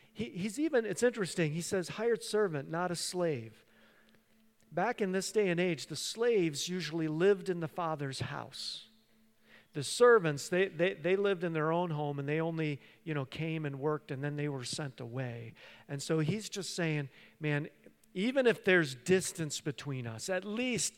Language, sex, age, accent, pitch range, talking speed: English, male, 50-69, American, 130-200 Hz, 180 wpm